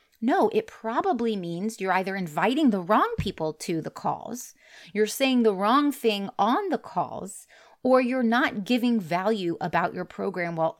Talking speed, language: 165 wpm, English